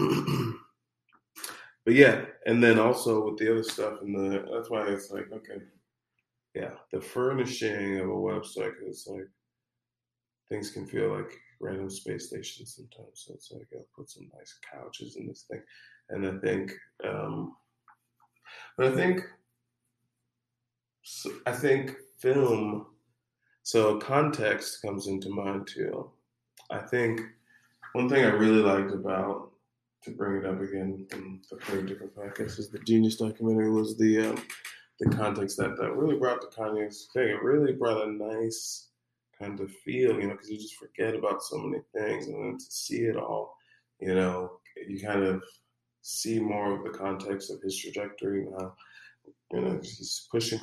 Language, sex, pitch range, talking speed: English, male, 100-120 Hz, 160 wpm